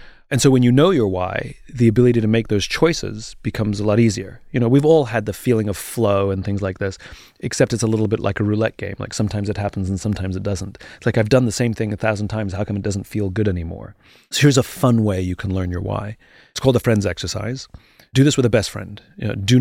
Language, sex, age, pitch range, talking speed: English, male, 30-49, 100-120 Hz, 265 wpm